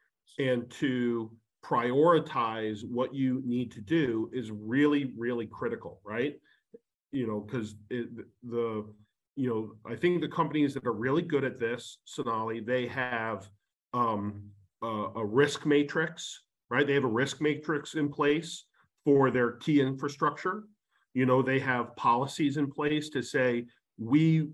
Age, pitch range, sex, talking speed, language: 40-59, 125-150 Hz, male, 145 wpm, English